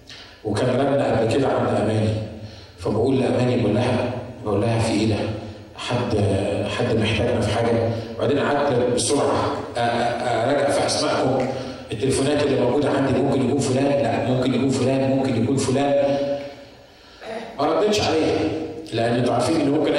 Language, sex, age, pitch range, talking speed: Arabic, male, 40-59, 115-140 Hz, 130 wpm